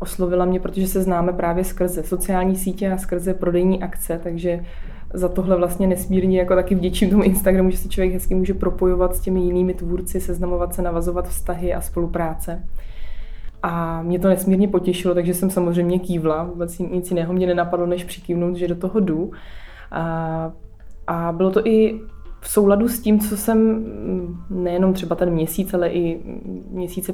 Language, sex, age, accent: Czech, female, 20-39, native